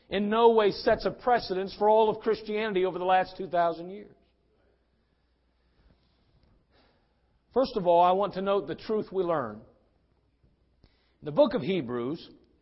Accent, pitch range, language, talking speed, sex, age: American, 155-210 Hz, English, 145 wpm, male, 50-69